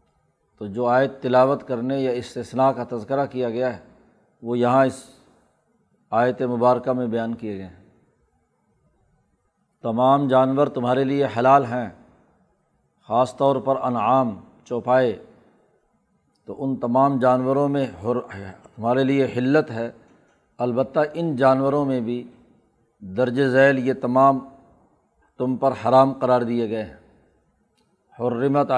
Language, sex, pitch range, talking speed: Urdu, male, 120-135 Hz, 125 wpm